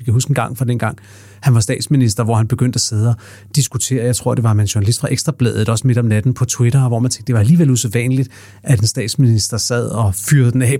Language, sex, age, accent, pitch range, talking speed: Danish, male, 30-49, native, 115-140 Hz, 270 wpm